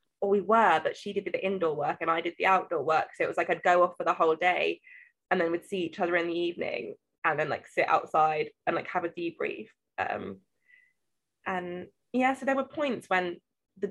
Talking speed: 230 wpm